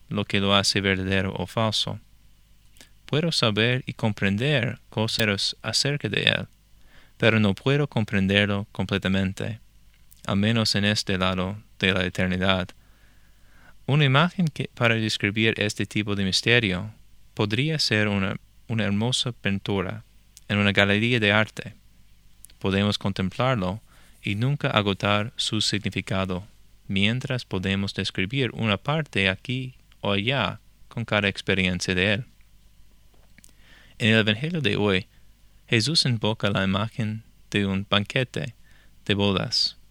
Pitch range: 95-115 Hz